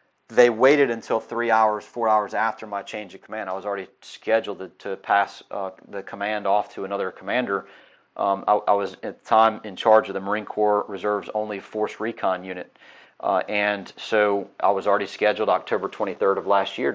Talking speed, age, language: 200 wpm, 40-59, English